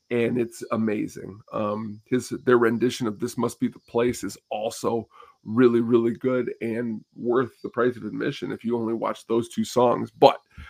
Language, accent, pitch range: English, American, 110-125 Hz